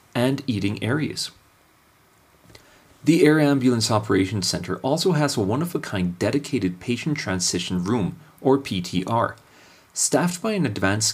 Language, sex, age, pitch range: English, male, 30-49, 100-145 Hz